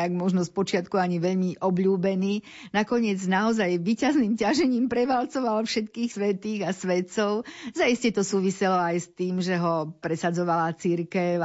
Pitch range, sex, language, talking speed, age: 170-205 Hz, female, Slovak, 130 wpm, 50-69